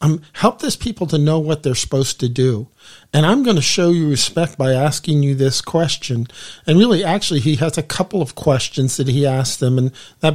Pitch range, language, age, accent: 135-175 Hz, English, 50-69, American